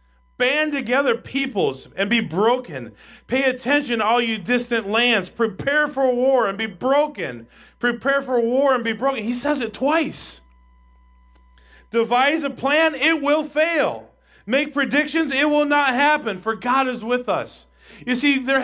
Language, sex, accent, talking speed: English, male, American, 155 wpm